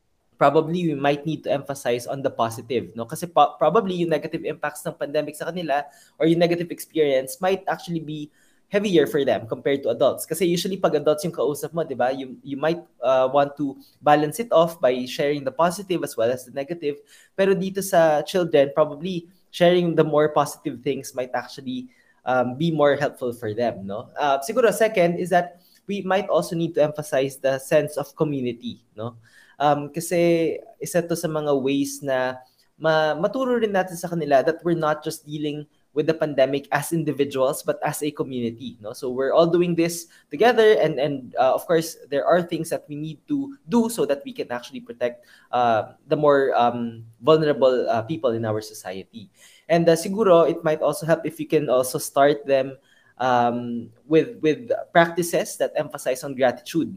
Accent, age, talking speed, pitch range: native, 20-39, 185 wpm, 135-170 Hz